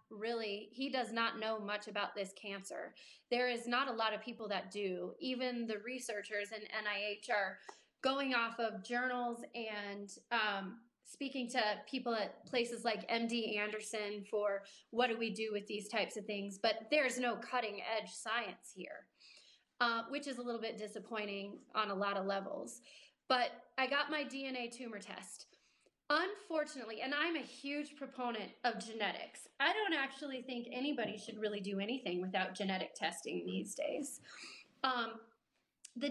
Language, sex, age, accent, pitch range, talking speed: English, female, 30-49, American, 205-255 Hz, 165 wpm